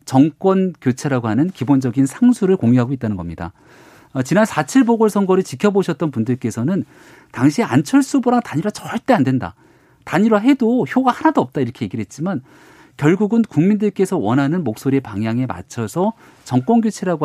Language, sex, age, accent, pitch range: Korean, male, 40-59, native, 120-190 Hz